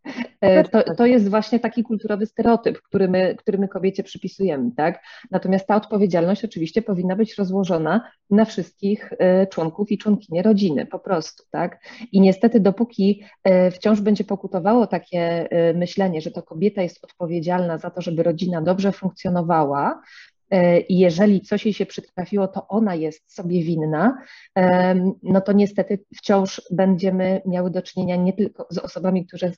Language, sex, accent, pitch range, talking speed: English, female, Polish, 175-200 Hz, 145 wpm